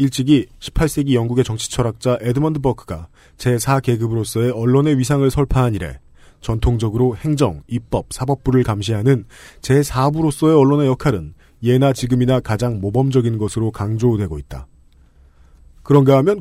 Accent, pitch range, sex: native, 110-140 Hz, male